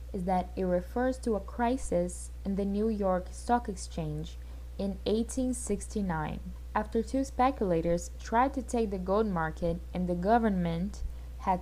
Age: 10-29